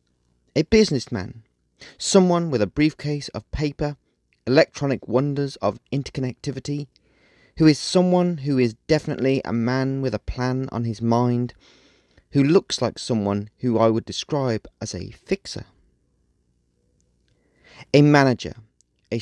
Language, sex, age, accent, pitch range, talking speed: English, male, 30-49, British, 110-145 Hz, 125 wpm